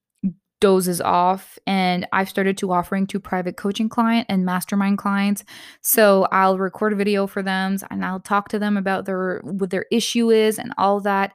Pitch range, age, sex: 185-220 Hz, 20-39, female